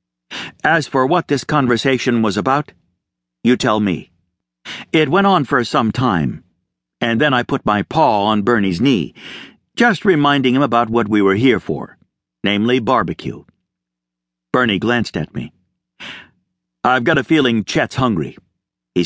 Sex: male